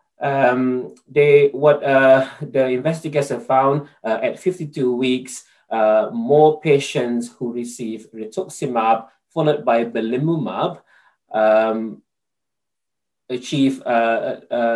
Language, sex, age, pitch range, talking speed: English, male, 20-39, 115-145 Hz, 100 wpm